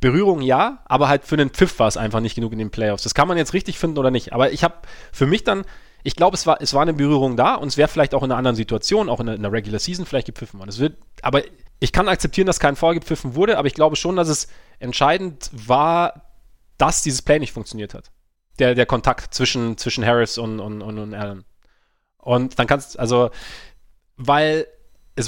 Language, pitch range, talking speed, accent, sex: German, 120-150 Hz, 235 wpm, German, male